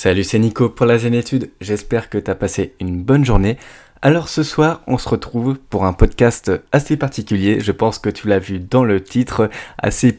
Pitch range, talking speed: 100-120 Hz, 205 wpm